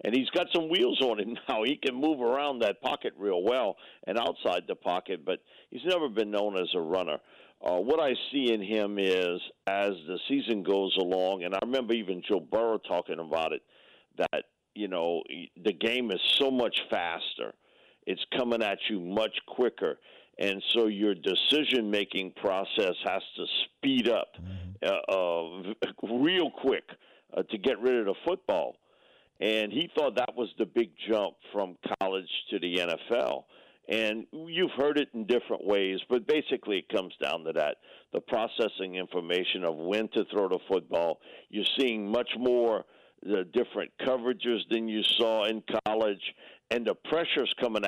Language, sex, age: English, male, 50-69